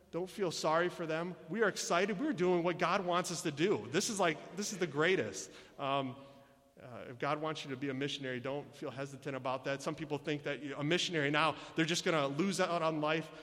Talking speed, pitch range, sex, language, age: 240 wpm, 125-155 Hz, male, English, 30-49